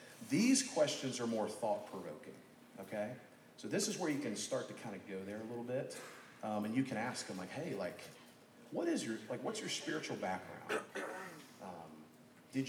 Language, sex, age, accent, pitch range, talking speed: English, male, 40-59, American, 95-120 Hz, 190 wpm